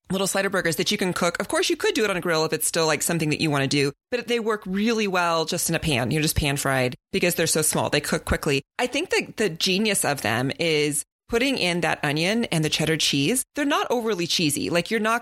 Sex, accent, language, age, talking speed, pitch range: female, American, English, 30-49, 270 wpm, 155-210 Hz